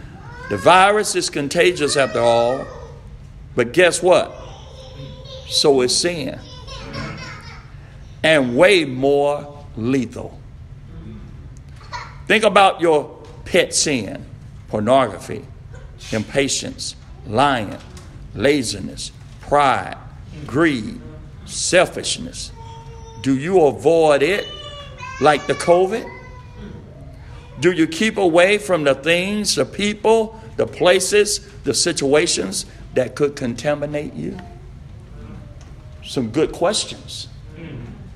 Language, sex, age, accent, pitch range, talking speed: English, male, 60-79, American, 125-185 Hz, 85 wpm